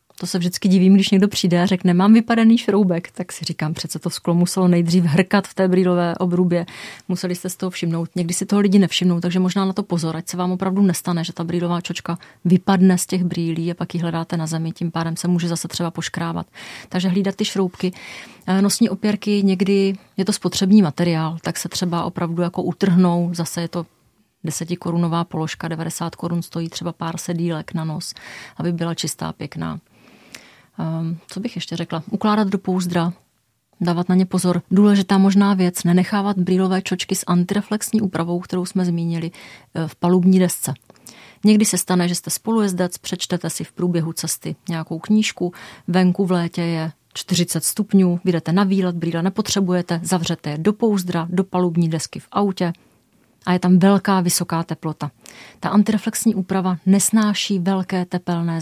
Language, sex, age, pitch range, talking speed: Czech, female, 30-49, 170-190 Hz, 175 wpm